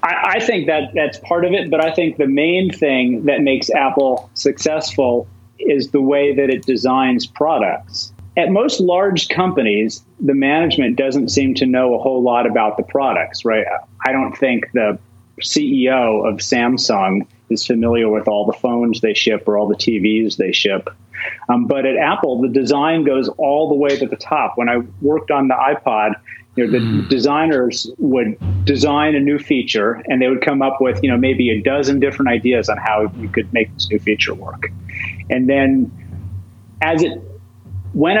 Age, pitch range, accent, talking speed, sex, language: 30-49, 110-145 Hz, American, 180 wpm, male, English